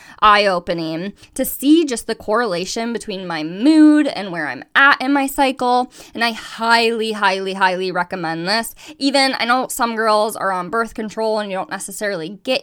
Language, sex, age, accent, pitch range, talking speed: English, female, 10-29, American, 185-240 Hz, 175 wpm